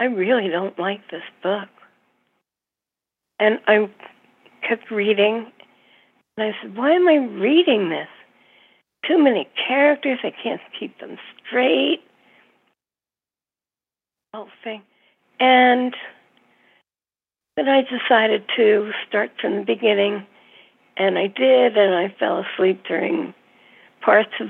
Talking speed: 115 wpm